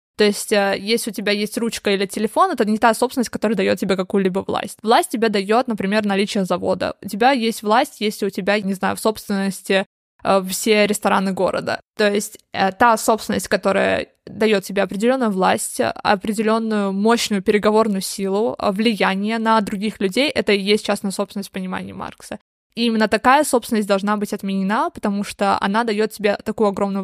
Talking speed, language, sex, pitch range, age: 170 wpm, Russian, female, 200-230 Hz, 20-39